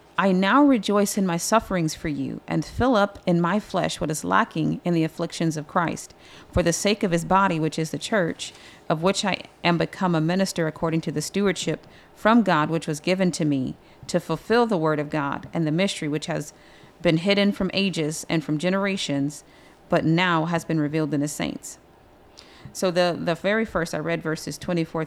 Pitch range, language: 160-195 Hz, English